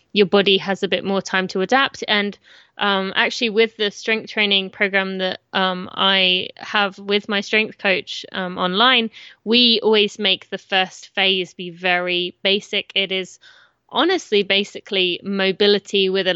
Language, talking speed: English, 160 wpm